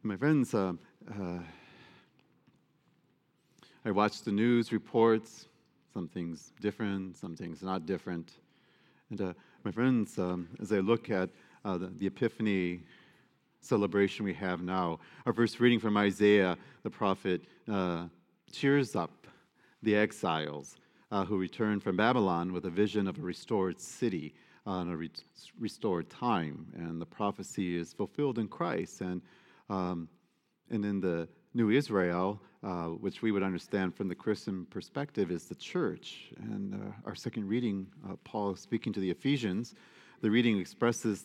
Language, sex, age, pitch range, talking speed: English, male, 40-59, 90-110 Hz, 145 wpm